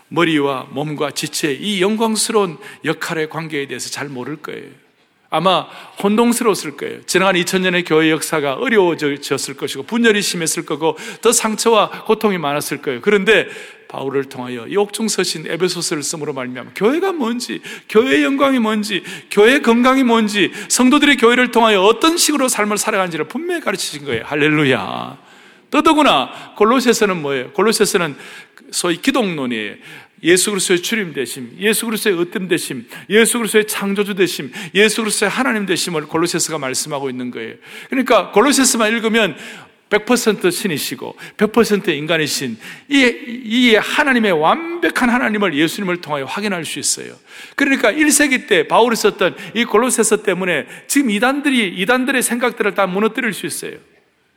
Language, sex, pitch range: Korean, male, 180-250 Hz